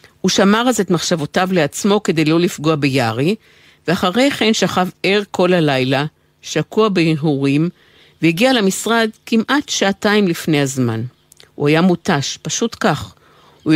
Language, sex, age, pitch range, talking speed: Hebrew, female, 50-69, 150-195 Hz, 130 wpm